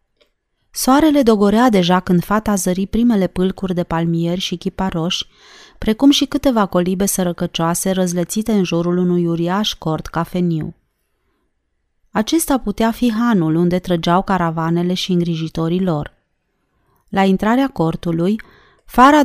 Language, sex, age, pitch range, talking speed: Romanian, female, 30-49, 175-220 Hz, 120 wpm